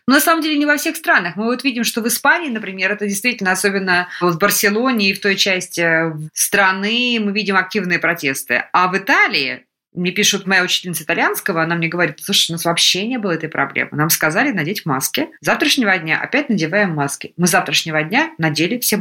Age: 20-39